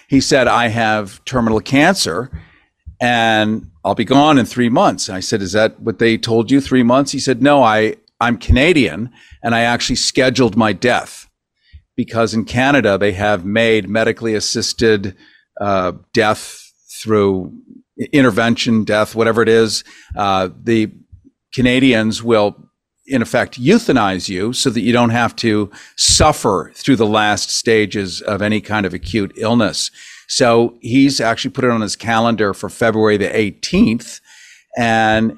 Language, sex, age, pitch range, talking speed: English, male, 50-69, 105-125 Hz, 150 wpm